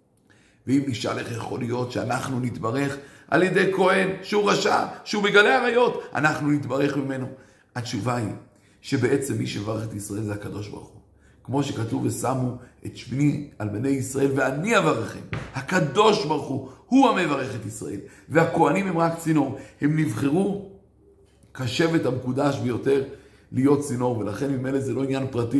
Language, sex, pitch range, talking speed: Hebrew, male, 110-150 Hz, 150 wpm